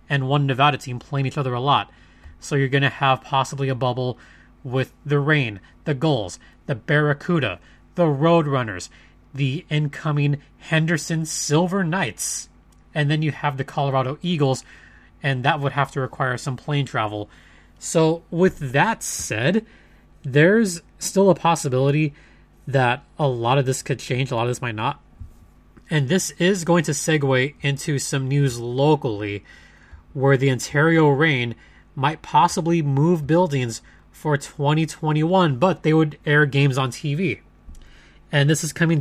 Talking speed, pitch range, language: 150 wpm, 125-160 Hz, English